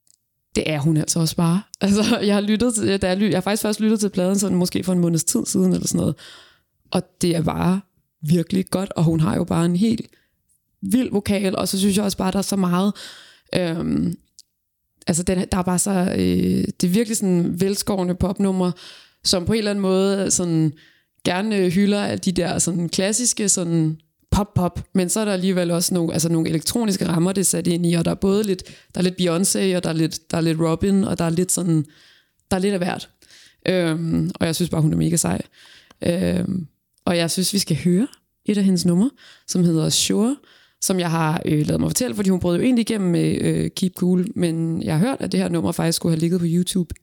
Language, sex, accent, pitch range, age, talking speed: Danish, female, native, 165-195 Hz, 20-39, 225 wpm